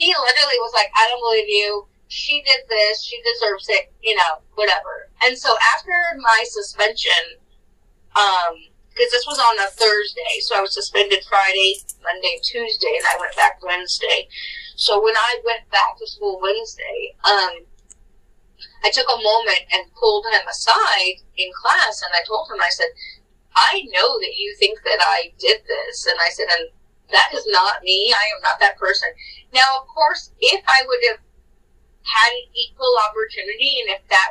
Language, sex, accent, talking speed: English, female, American, 175 wpm